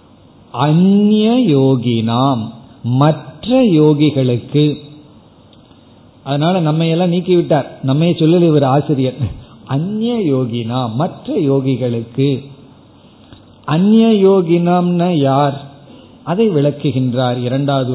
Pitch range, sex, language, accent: 130-180 Hz, male, Tamil, native